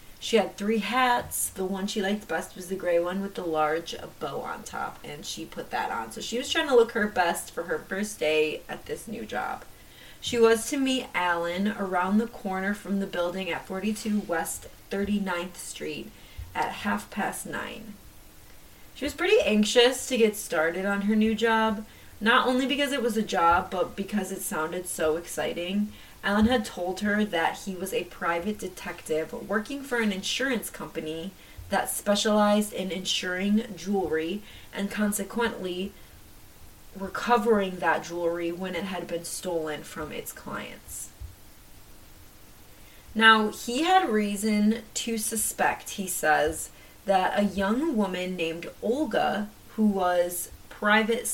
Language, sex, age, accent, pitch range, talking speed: English, female, 20-39, American, 175-220 Hz, 155 wpm